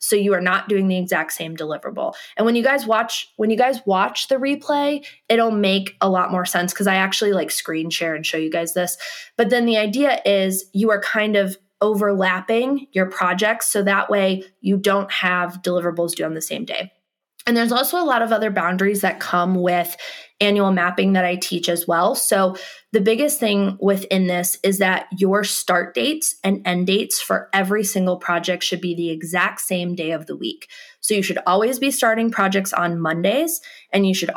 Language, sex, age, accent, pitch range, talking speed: English, female, 20-39, American, 180-225 Hz, 205 wpm